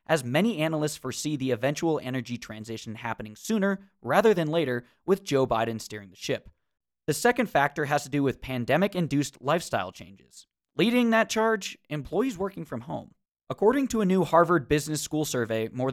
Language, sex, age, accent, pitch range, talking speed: English, male, 20-39, American, 125-175 Hz, 170 wpm